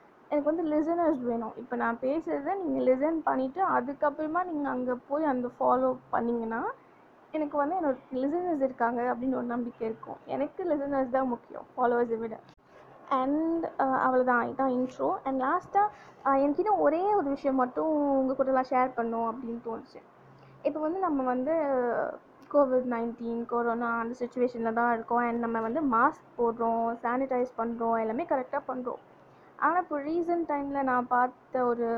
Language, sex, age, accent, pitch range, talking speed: Tamil, female, 20-39, native, 240-290 Hz, 145 wpm